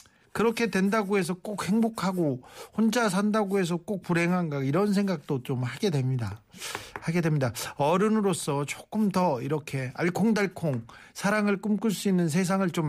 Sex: male